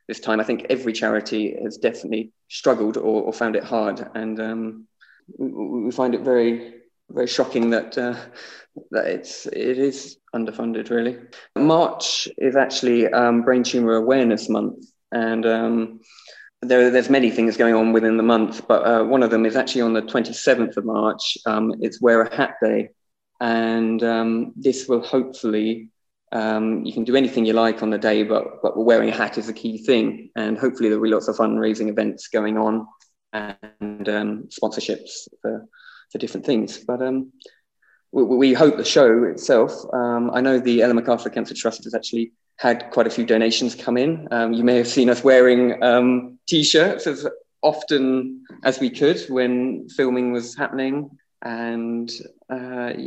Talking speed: 175 wpm